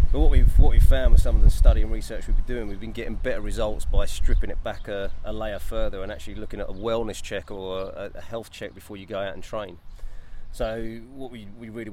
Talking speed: 260 wpm